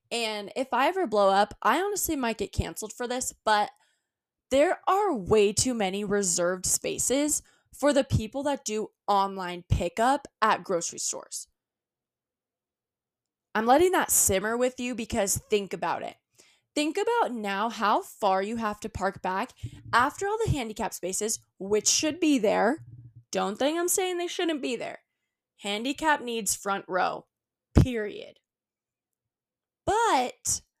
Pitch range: 205-310 Hz